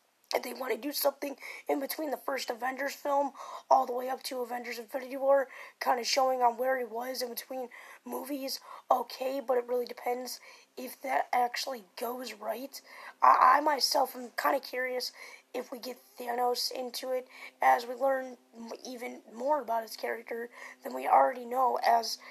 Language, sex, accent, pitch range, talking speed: English, female, American, 240-275 Hz, 180 wpm